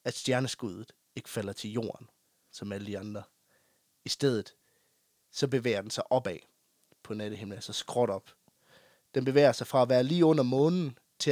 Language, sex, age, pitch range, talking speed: Danish, male, 30-49, 105-135 Hz, 170 wpm